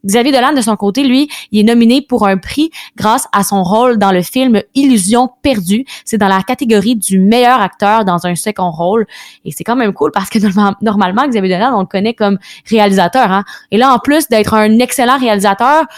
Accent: Canadian